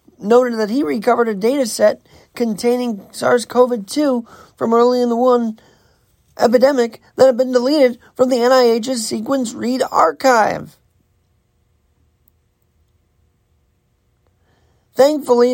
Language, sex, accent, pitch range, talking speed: English, male, American, 200-250 Hz, 100 wpm